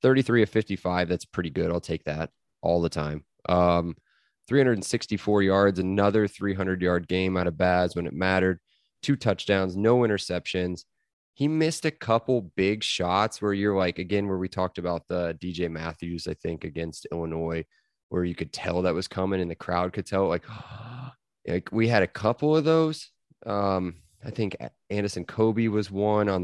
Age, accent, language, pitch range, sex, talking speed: 20-39, American, English, 90-110 Hz, male, 175 wpm